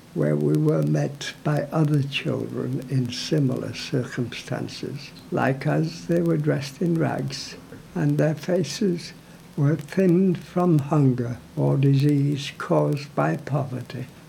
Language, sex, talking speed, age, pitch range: English, male, 120 wpm, 60-79, 135-165 Hz